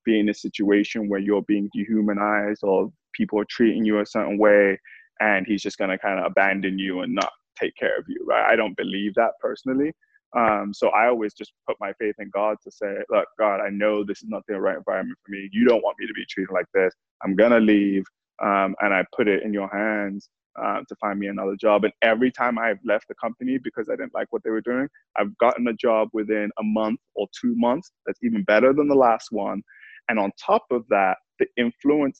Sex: male